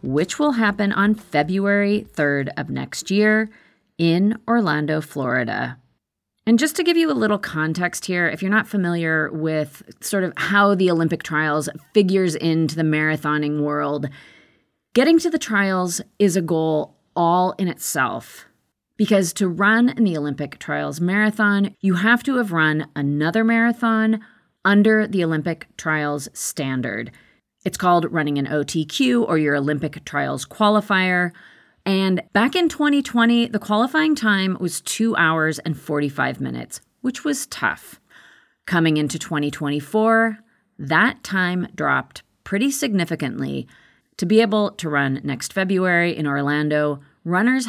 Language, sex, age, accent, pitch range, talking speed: English, female, 30-49, American, 150-215 Hz, 140 wpm